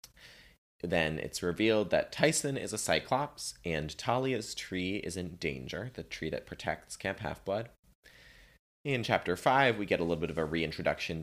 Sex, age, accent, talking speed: male, 30-49, American, 165 wpm